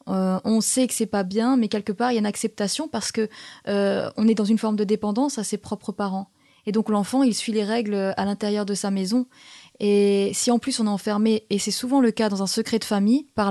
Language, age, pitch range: French, 20-39, 200-235 Hz